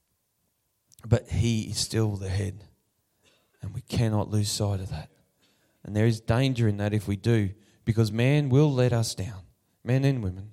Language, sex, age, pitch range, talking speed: English, male, 20-39, 100-125 Hz, 175 wpm